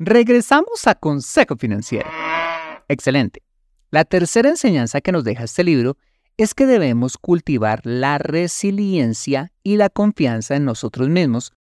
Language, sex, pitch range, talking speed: Spanish, male, 115-170 Hz, 130 wpm